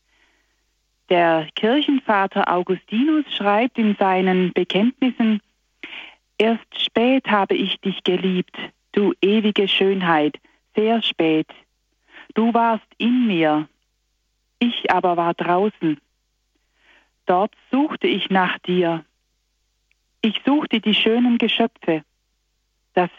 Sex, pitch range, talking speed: female, 165-230 Hz, 95 wpm